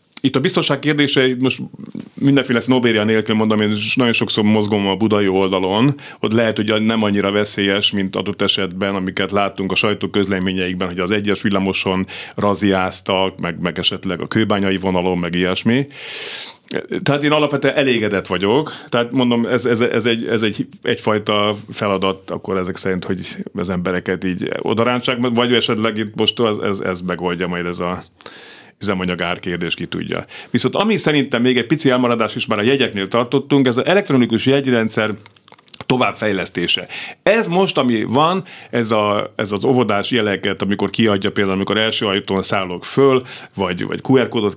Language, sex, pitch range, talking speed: Hungarian, male, 95-120 Hz, 160 wpm